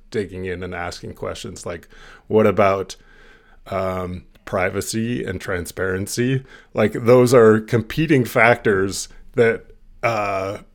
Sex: male